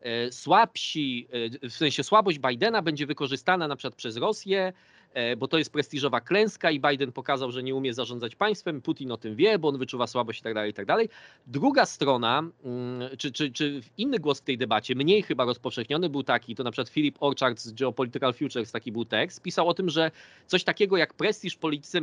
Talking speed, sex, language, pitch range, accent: 205 wpm, male, Polish, 130-160 Hz, native